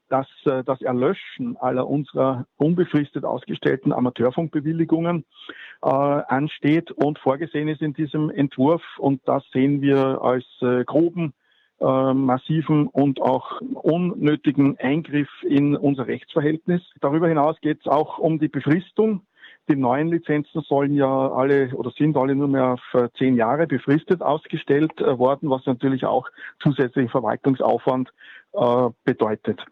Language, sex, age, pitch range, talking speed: German, male, 50-69, 135-165 Hz, 125 wpm